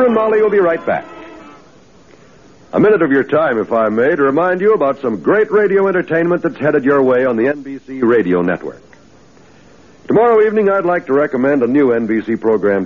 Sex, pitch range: male, 135-195 Hz